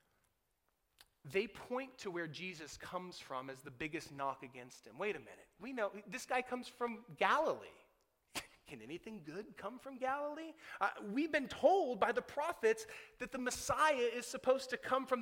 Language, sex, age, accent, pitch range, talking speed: English, male, 30-49, American, 170-255 Hz, 175 wpm